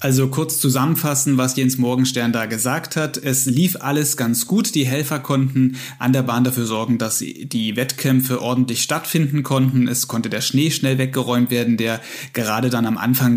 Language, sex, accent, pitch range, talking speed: German, male, German, 125-150 Hz, 180 wpm